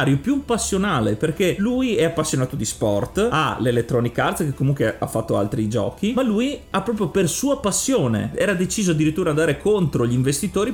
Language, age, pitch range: Italian, 30-49, 130-180 Hz